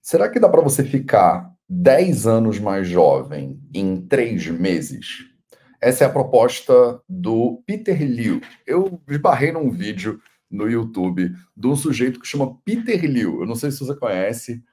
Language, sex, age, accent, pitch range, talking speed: Portuguese, male, 40-59, Brazilian, 120-185 Hz, 160 wpm